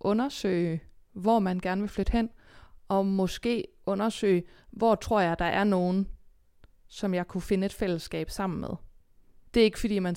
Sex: female